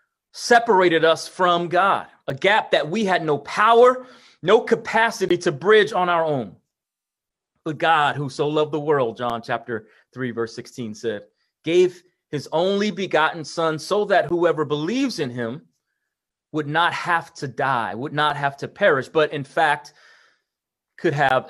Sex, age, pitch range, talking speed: male, 30-49, 135-175 Hz, 160 wpm